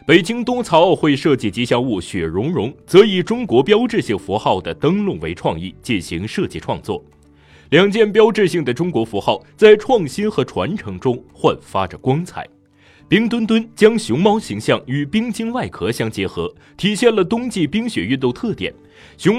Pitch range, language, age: 145-220 Hz, Chinese, 30-49